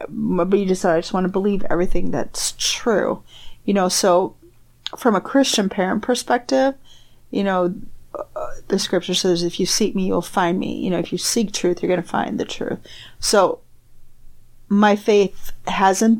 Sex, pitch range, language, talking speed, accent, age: female, 180-220 Hz, English, 180 wpm, American, 30-49